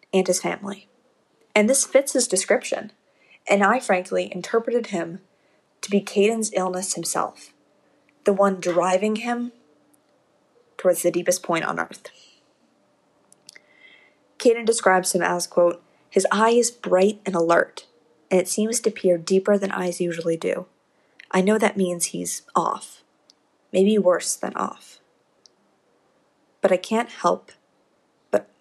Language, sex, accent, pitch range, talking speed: English, female, American, 180-215 Hz, 135 wpm